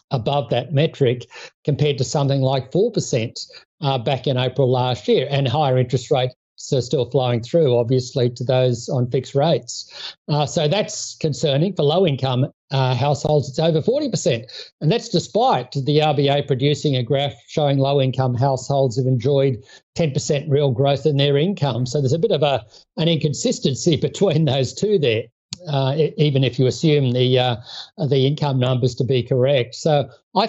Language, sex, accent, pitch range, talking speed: English, male, Australian, 130-155 Hz, 165 wpm